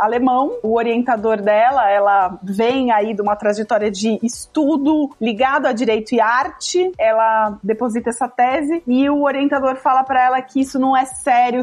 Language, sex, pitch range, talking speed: Portuguese, female, 225-275 Hz, 165 wpm